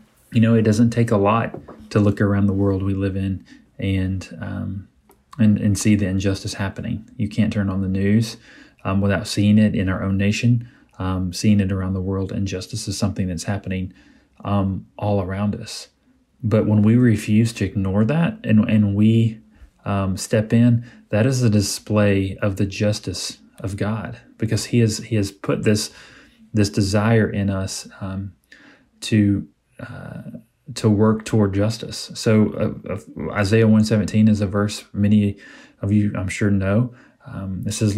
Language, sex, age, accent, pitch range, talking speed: English, male, 30-49, American, 100-110 Hz, 175 wpm